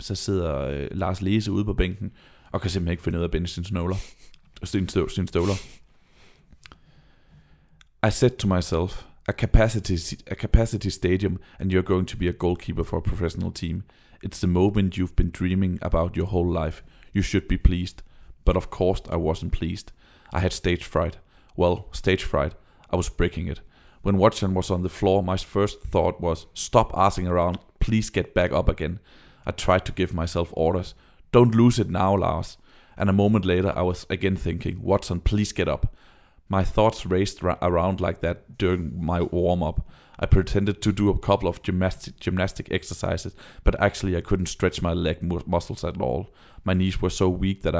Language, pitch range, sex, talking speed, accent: Danish, 85-100 Hz, male, 180 wpm, native